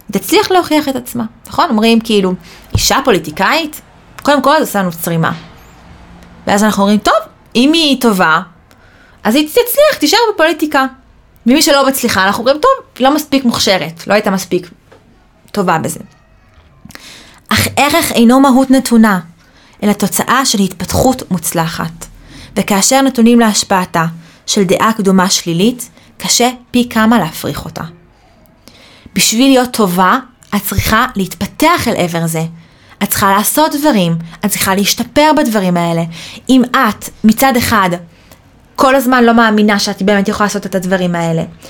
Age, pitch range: 20-39, 190-265 Hz